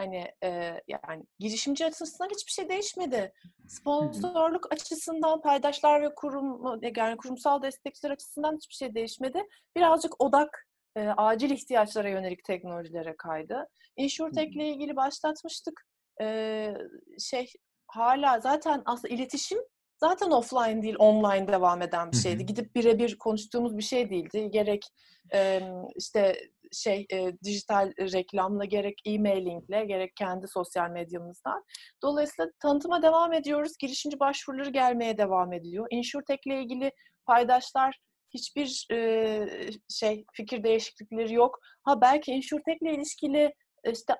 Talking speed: 115 wpm